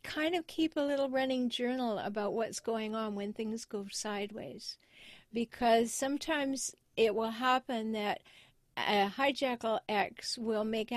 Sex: female